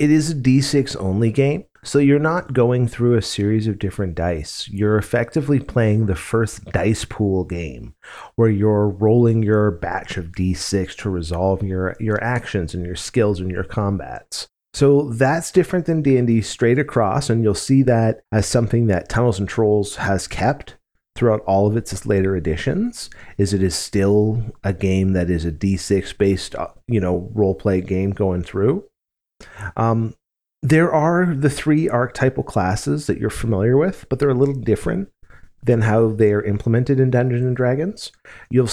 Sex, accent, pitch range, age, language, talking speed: male, American, 100-130 Hz, 30-49, English, 170 wpm